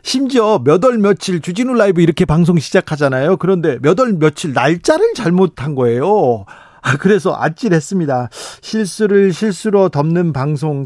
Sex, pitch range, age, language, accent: male, 140-185 Hz, 40-59, Korean, native